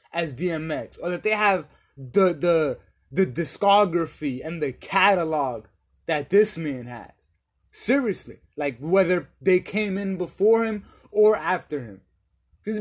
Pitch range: 135-185 Hz